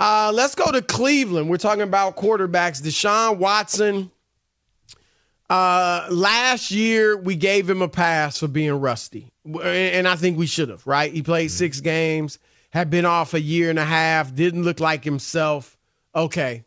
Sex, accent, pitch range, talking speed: male, American, 160-210 Hz, 165 wpm